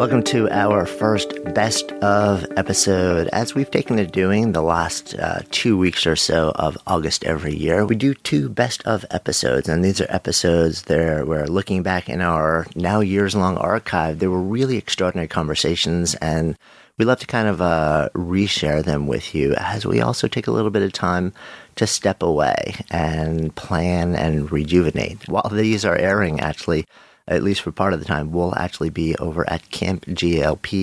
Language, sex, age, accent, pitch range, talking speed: English, male, 40-59, American, 80-100 Hz, 185 wpm